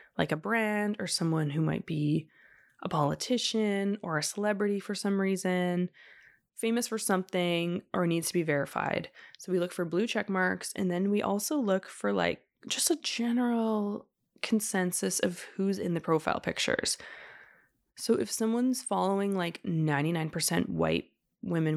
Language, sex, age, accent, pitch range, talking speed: English, female, 20-39, American, 170-210 Hz, 155 wpm